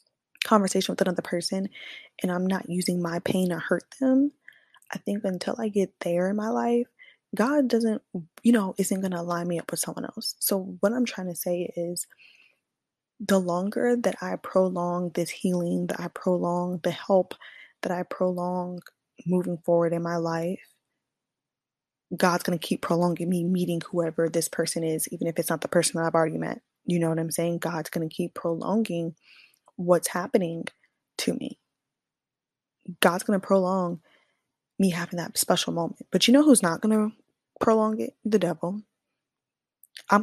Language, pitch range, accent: English, 170-200 Hz, American